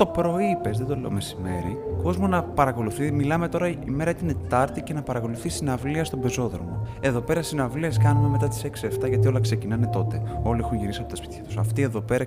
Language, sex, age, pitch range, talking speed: Greek, male, 20-39, 105-140 Hz, 200 wpm